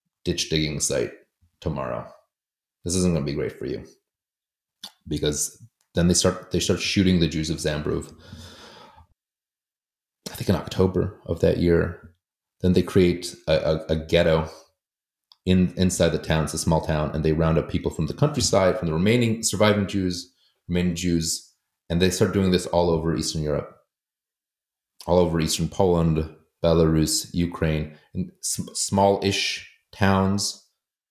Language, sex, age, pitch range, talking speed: English, male, 30-49, 80-90 Hz, 155 wpm